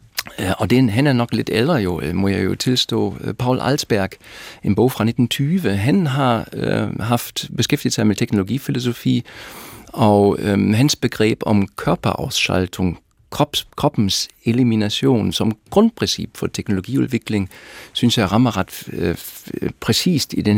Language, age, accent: Danish, 50-69, German